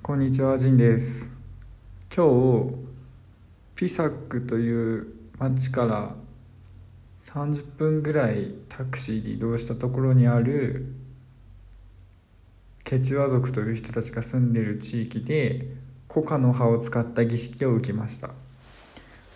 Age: 20-39